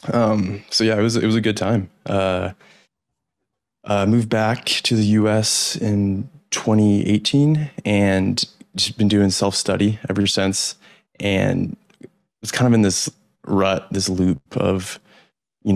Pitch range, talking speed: 95-105 Hz, 150 wpm